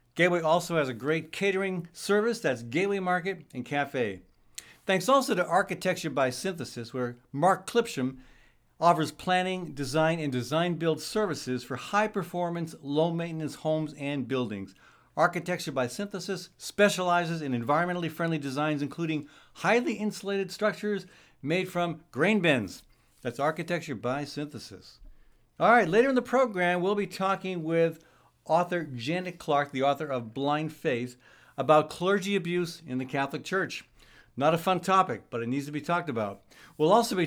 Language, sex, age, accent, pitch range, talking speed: English, male, 70-89, American, 140-185 Hz, 145 wpm